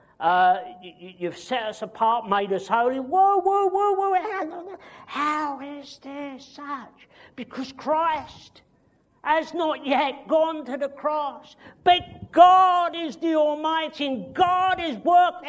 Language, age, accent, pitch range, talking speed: English, 50-69, British, 200-300 Hz, 135 wpm